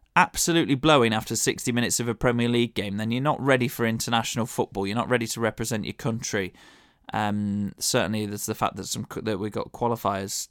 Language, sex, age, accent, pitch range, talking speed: English, male, 20-39, British, 110-130 Hz, 200 wpm